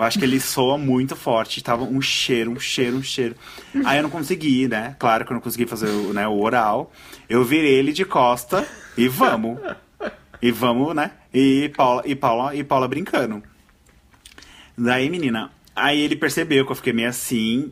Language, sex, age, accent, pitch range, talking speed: Portuguese, male, 20-39, Brazilian, 120-155 Hz, 185 wpm